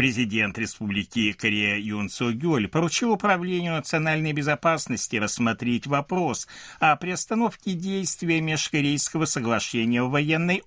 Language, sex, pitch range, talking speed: Russian, male, 105-165 Hz, 100 wpm